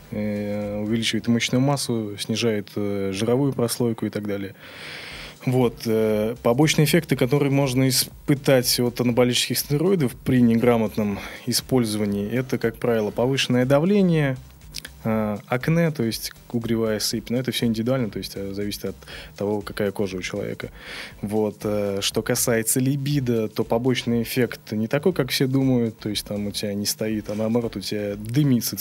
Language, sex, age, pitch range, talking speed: Russian, male, 20-39, 110-130 Hz, 140 wpm